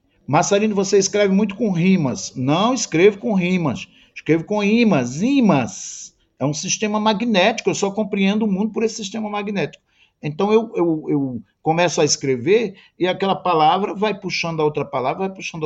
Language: Portuguese